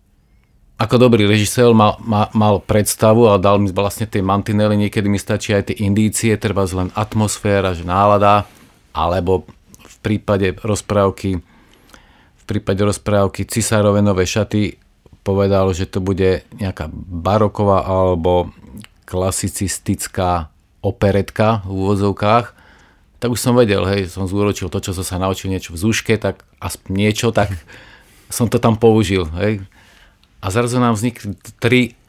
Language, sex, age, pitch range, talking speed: Slovak, male, 40-59, 95-110 Hz, 135 wpm